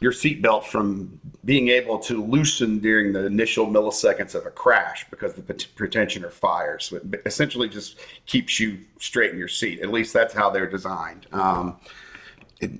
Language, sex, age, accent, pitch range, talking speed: English, male, 40-59, American, 100-130 Hz, 170 wpm